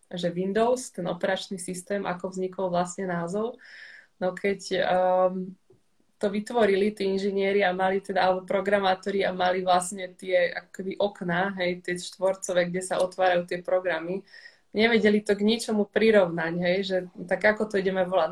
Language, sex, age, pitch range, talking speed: Slovak, female, 20-39, 175-200 Hz, 150 wpm